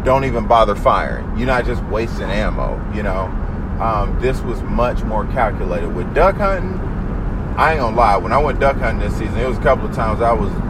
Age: 30-49